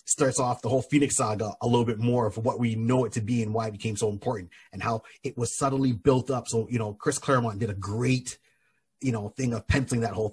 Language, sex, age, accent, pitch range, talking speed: English, male, 30-49, American, 110-135 Hz, 260 wpm